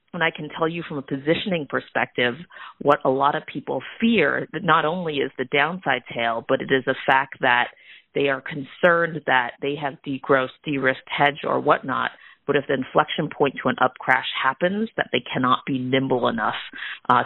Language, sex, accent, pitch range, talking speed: English, female, American, 130-150 Hz, 195 wpm